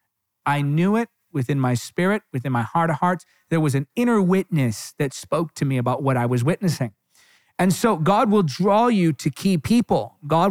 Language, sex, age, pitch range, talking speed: English, male, 40-59, 145-205 Hz, 200 wpm